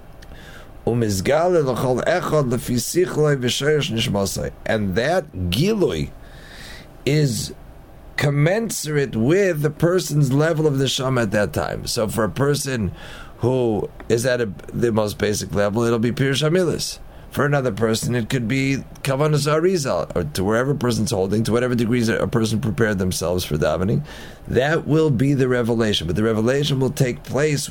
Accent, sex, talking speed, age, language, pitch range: American, male, 135 wpm, 40-59, English, 110-140 Hz